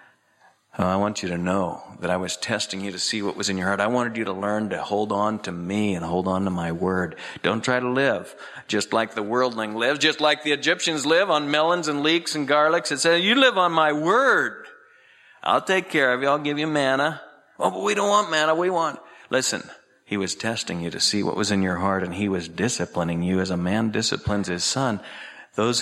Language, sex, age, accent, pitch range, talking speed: English, male, 50-69, American, 100-155 Hz, 235 wpm